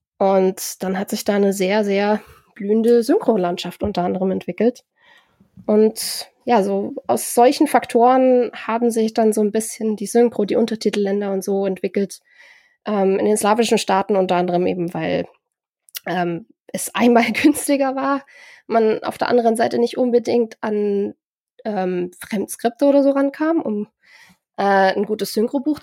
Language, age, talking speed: German, 20-39, 150 wpm